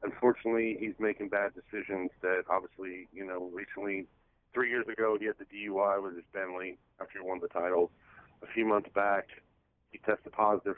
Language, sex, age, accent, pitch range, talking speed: English, male, 40-59, American, 95-110 Hz, 180 wpm